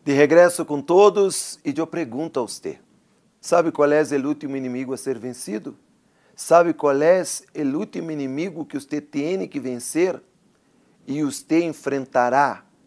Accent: Brazilian